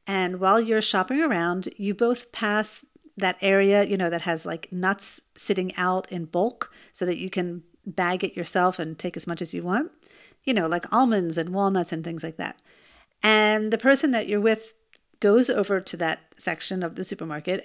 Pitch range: 180-235 Hz